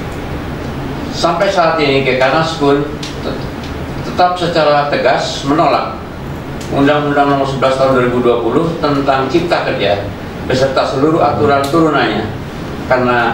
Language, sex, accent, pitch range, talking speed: Indonesian, male, native, 115-145 Hz, 100 wpm